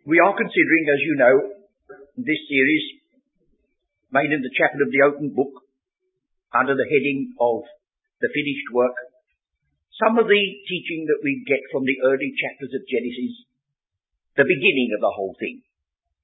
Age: 50-69